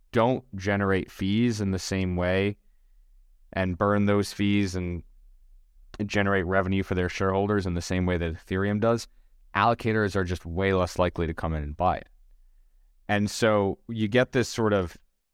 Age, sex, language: 20-39, male, English